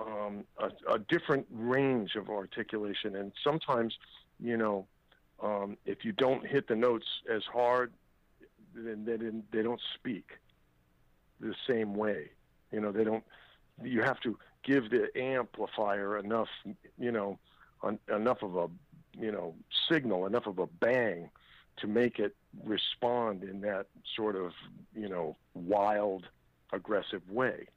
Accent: American